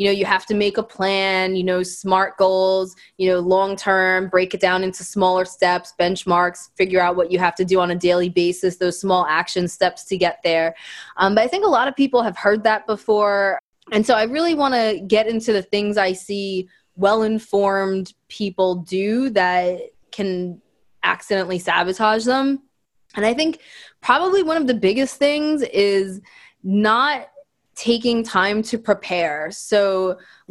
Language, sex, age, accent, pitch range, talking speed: English, female, 20-39, American, 190-235 Hz, 175 wpm